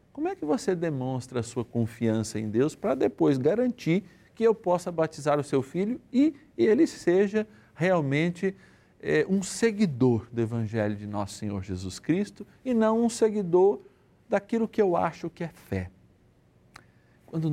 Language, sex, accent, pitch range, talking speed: Portuguese, male, Brazilian, 120-190 Hz, 160 wpm